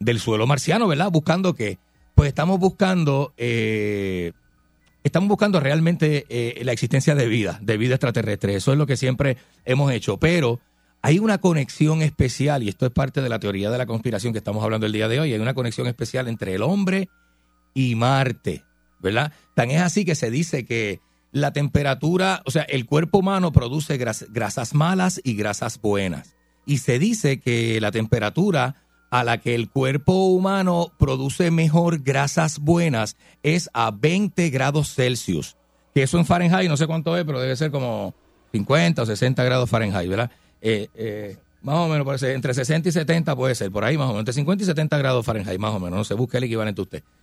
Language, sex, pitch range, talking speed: Spanish, male, 110-160 Hz, 195 wpm